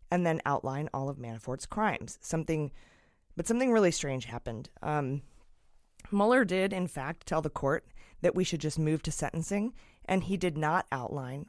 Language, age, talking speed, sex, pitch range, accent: English, 30-49, 170 wpm, female, 145-185 Hz, American